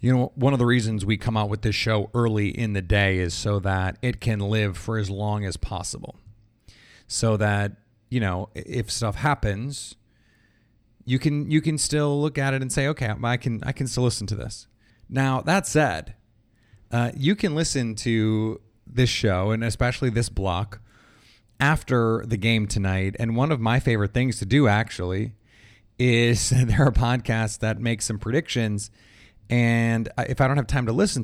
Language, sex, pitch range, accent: English, male, 105-130 Hz, American